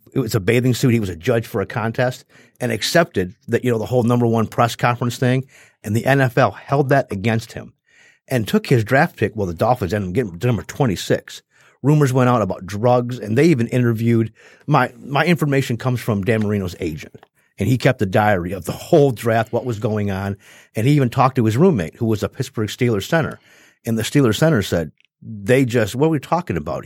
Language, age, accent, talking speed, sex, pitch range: English, 50-69, American, 230 wpm, male, 110-140 Hz